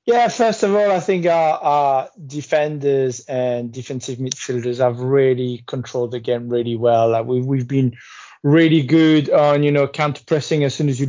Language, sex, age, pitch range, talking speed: English, male, 30-49, 135-165 Hz, 185 wpm